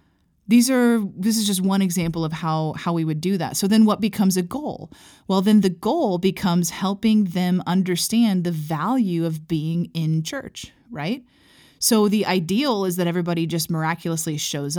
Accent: American